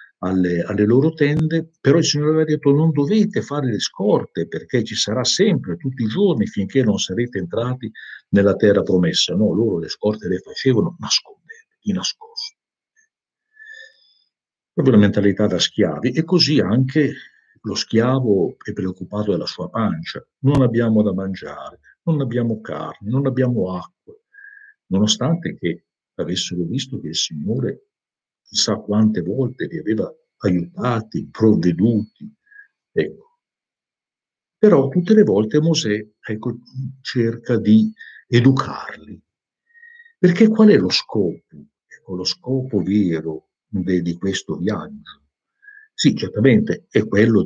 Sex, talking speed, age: male, 130 wpm, 50-69